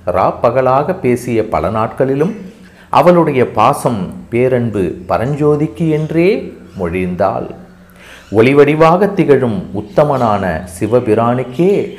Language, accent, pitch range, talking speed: Tamil, native, 95-145 Hz, 70 wpm